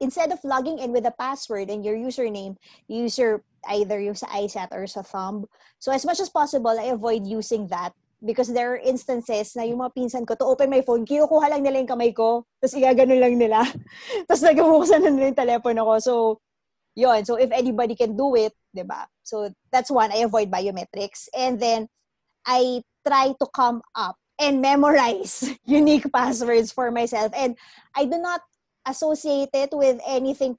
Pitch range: 220-275 Hz